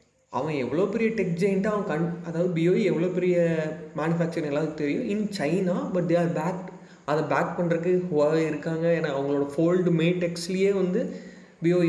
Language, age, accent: Tamil, 30-49, native